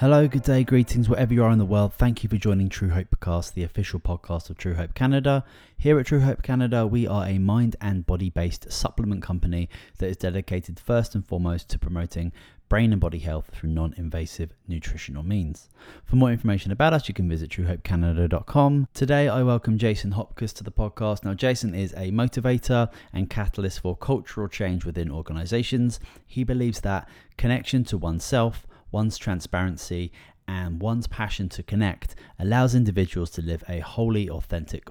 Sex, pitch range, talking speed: male, 85-115 Hz, 175 wpm